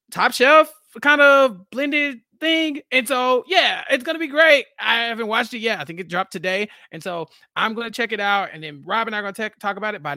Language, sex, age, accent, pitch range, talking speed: English, male, 30-49, American, 170-270 Hz, 250 wpm